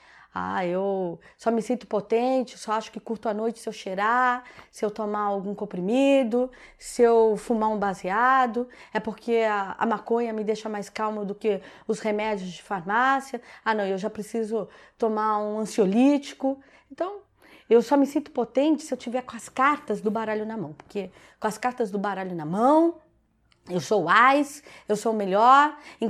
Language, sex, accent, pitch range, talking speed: Portuguese, female, Brazilian, 210-255 Hz, 185 wpm